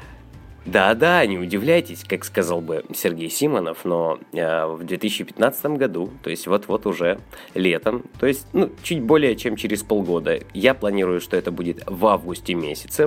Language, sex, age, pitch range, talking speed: Russian, male, 20-39, 90-120 Hz, 155 wpm